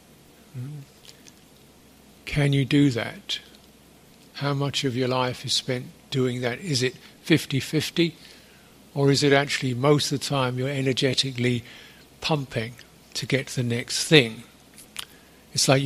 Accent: British